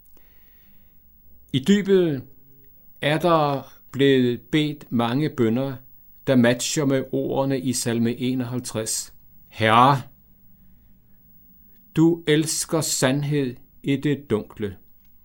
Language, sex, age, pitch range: Danish, male, 60-79, 110-145 Hz